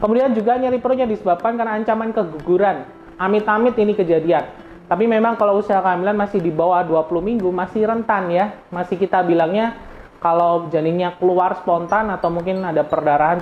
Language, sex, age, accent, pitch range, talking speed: Indonesian, male, 20-39, native, 155-210 Hz, 155 wpm